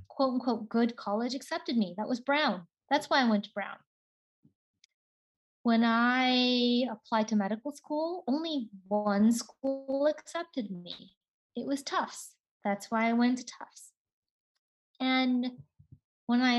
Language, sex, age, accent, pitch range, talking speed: English, female, 30-49, American, 220-265 Hz, 135 wpm